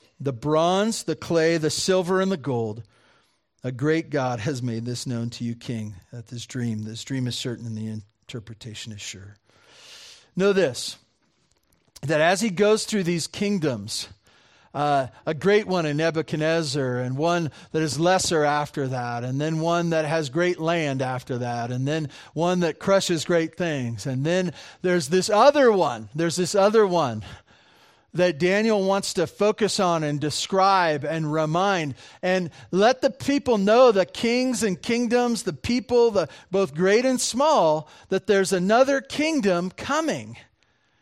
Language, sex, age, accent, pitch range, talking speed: English, male, 40-59, American, 125-185 Hz, 160 wpm